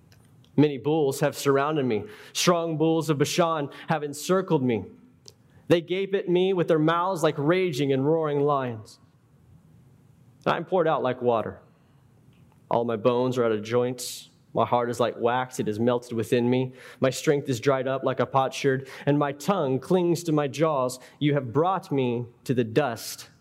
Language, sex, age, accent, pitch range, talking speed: English, male, 20-39, American, 125-145 Hz, 175 wpm